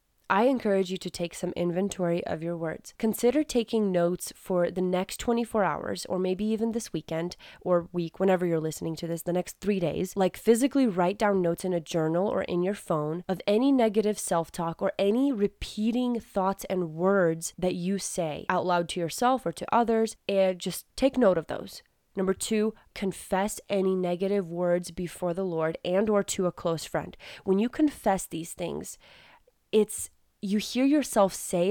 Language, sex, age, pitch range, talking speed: English, female, 20-39, 175-205 Hz, 185 wpm